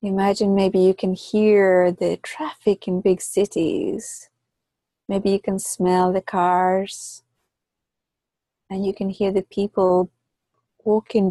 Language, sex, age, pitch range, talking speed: English, female, 30-49, 180-205 Hz, 120 wpm